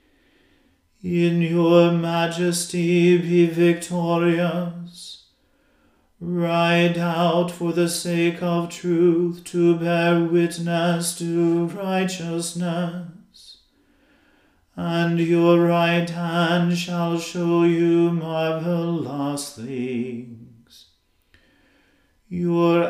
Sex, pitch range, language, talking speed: male, 170-175 Hz, English, 70 wpm